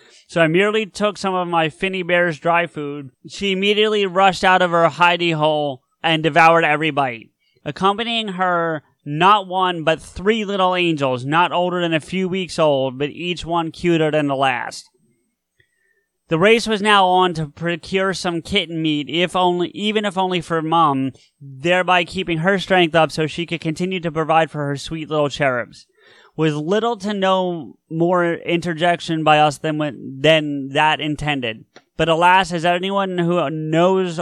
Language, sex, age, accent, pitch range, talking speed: English, male, 30-49, American, 155-185 Hz, 170 wpm